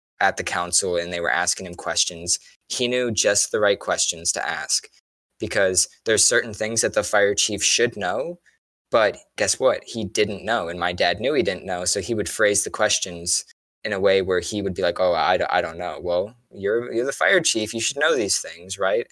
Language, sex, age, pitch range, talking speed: English, male, 20-39, 90-115 Hz, 225 wpm